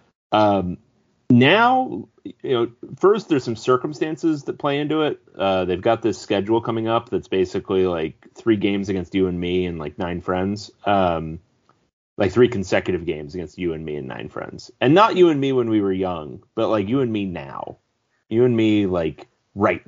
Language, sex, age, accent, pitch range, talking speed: English, male, 30-49, American, 90-125 Hz, 195 wpm